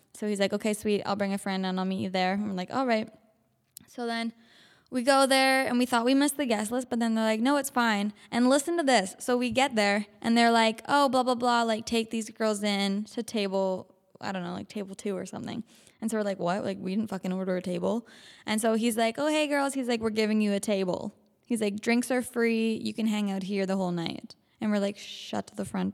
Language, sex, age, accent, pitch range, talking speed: English, female, 10-29, American, 205-235 Hz, 260 wpm